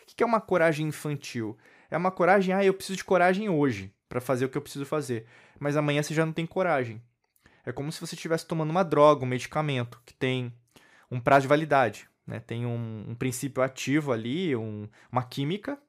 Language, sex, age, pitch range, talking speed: Portuguese, male, 20-39, 125-165 Hz, 210 wpm